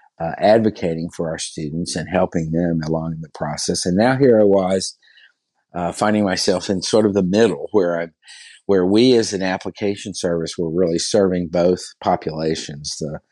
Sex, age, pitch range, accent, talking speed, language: male, 50-69, 80-95 Hz, American, 165 wpm, English